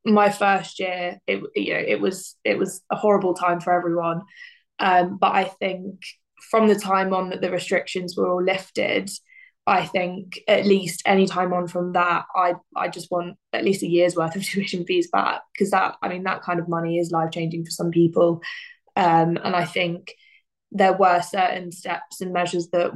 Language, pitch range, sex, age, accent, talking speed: English, 175-200 Hz, female, 20-39, British, 200 wpm